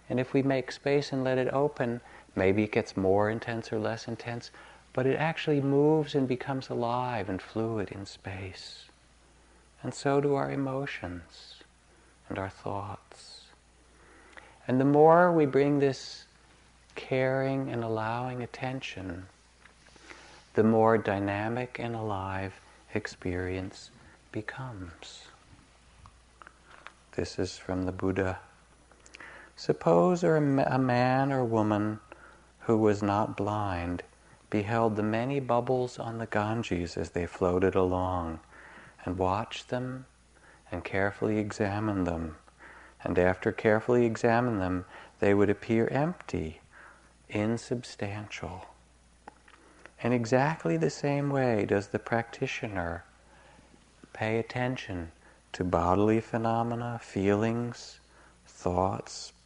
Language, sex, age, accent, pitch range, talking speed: English, male, 50-69, American, 95-125 Hz, 110 wpm